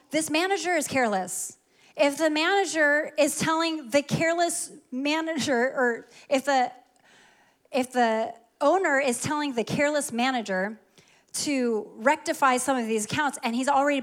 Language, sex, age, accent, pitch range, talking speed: English, female, 30-49, American, 215-275 Hz, 135 wpm